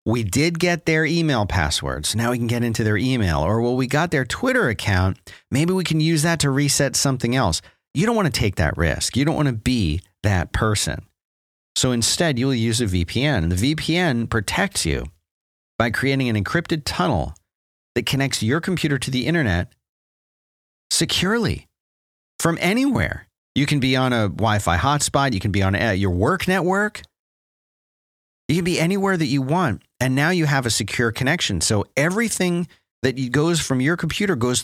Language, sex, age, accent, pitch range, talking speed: English, male, 40-59, American, 95-145 Hz, 180 wpm